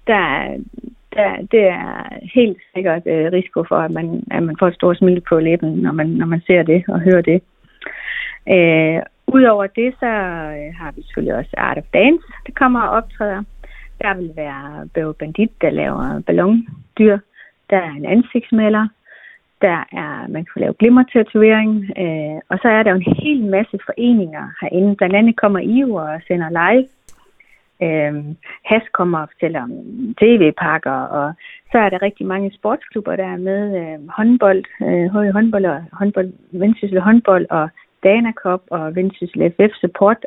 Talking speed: 160 wpm